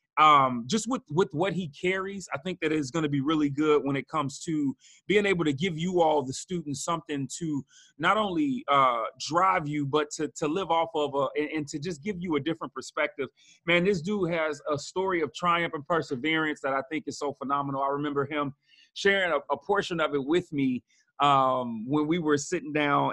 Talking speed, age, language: 215 wpm, 30-49, English